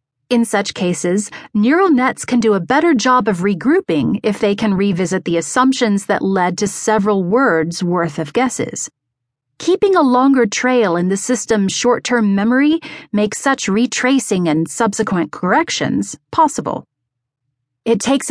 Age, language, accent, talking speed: 40-59, English, American, 145 wpm